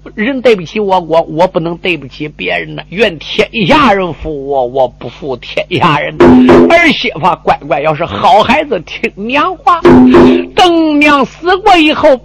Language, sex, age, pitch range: Chinese, male, 50-69, 150-225 Hz